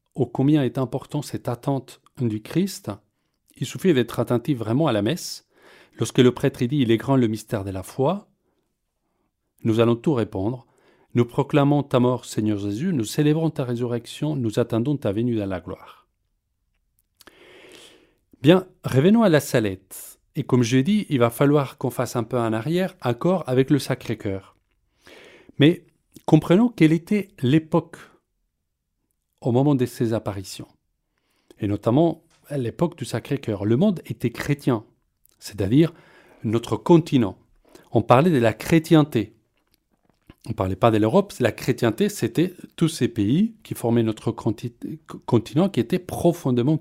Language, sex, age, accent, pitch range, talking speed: French, male, 40-59, French, 115-155 Hz, 155 wpm